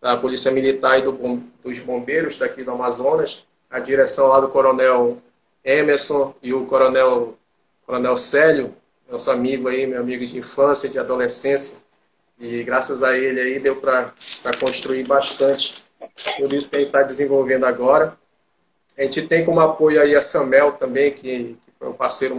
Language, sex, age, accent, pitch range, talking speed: Portuguese, male, 20-39, Brazilian, 130-140 Hz, 160 wpm